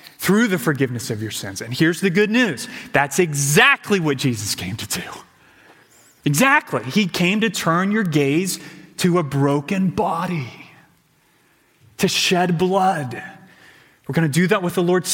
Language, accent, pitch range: English, American, 135-180 Hz